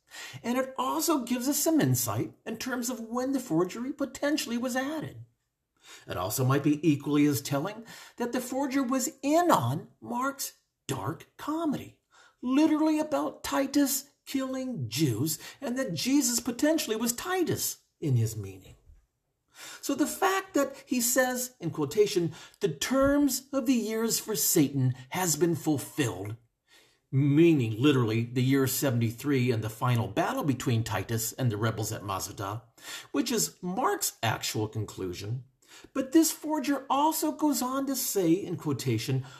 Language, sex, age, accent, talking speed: English, male, 50-69, American, 145 wpm